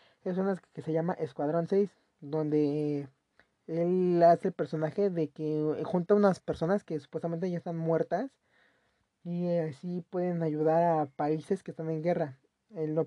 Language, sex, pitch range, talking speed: Spanish, male, 155-185 Hz, 155 wpm